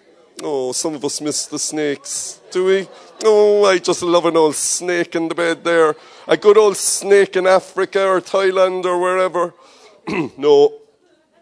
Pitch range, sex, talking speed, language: 115-180 Hz, male, 165 wpm, English